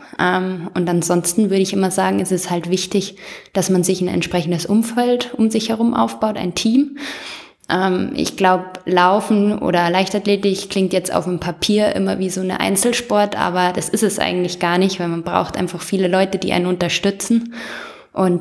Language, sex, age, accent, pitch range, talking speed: German, female, 20-39, German, 185-210 Hz, 175 wpm